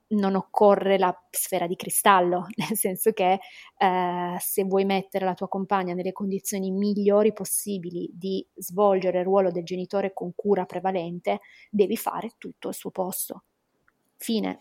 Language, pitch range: Italian, 185-215 Hz